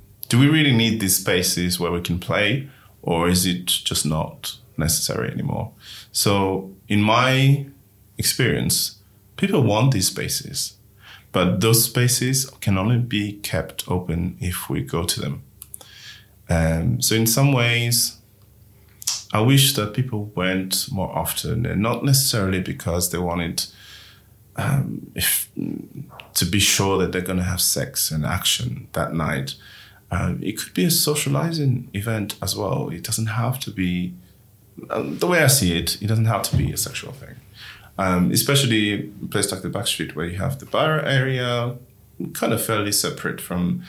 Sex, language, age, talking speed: male, English, 30-49, 155 wpm